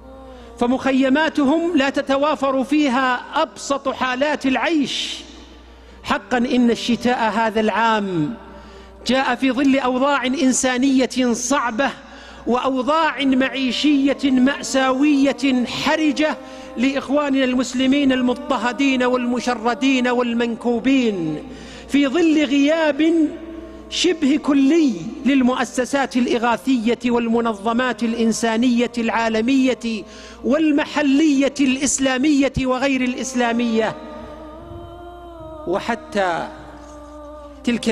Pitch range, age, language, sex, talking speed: 220-275 Hz, 50-69, Arabic, male, 70 wpm